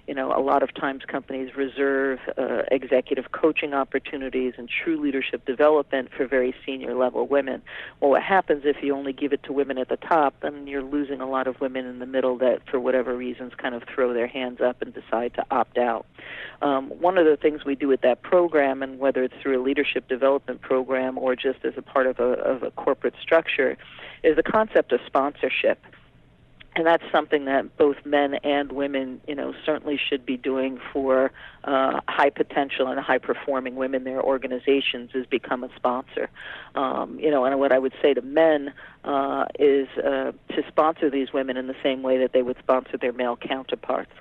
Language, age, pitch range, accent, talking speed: English, 40-59, 130-145 Hz, American, 200 wpm